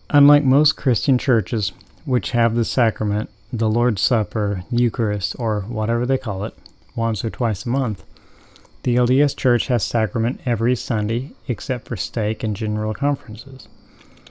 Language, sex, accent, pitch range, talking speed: English, male, American, 110-130 Hz, 145 wpm